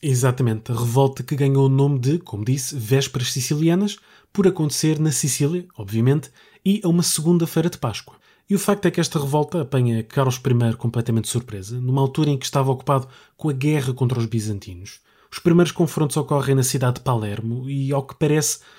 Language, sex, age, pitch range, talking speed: Portuguese, male, 20-39, 125-155 Hz, 190 wpm